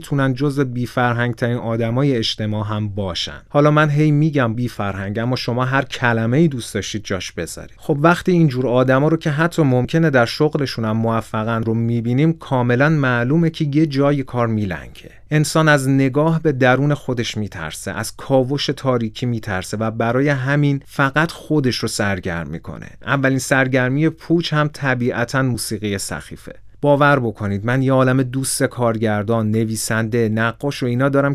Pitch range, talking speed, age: 110-140 Hz, 160 wpm, 30-49